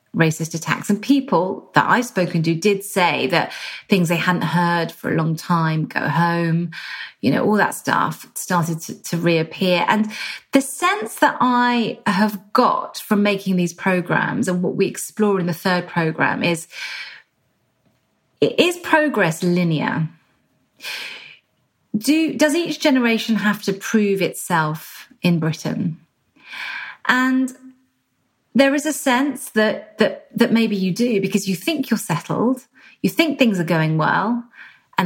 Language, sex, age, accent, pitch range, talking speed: English, female, 30-49, British, 170-255 Hz, 145 wpm